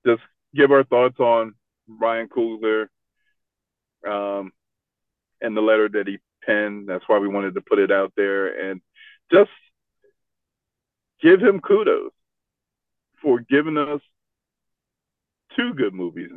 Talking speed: 125 wpm